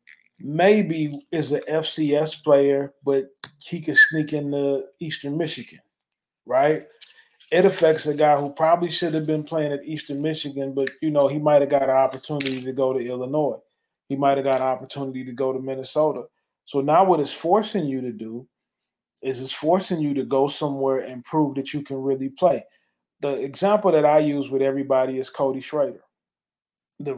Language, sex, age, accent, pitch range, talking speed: English, male, 20-39, American, 135-160 Hz, 185 wpm